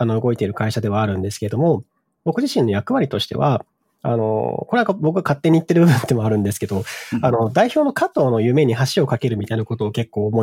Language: Japanese